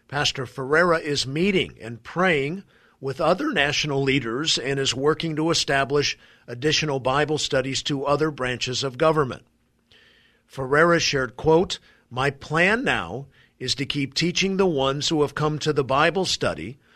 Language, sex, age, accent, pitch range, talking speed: English, male, 50-69, American, 130-160 Hz, 150 wpm